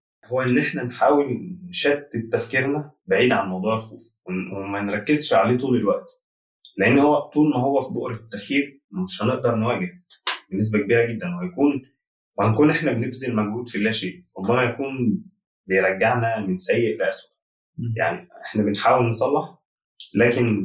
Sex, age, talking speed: male, 20-39, 140 wpm